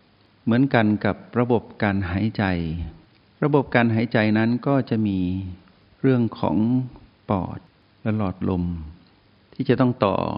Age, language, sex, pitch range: 60-79, Thai, male, 95-110 Hz